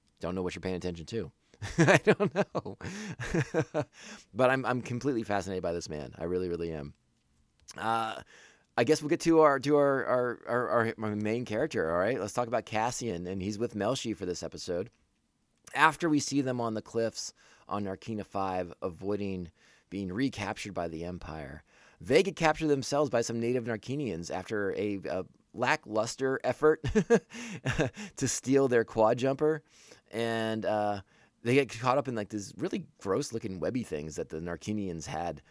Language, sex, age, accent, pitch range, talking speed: English, male, 30-49, American, 95-130 Hz, 170 wpm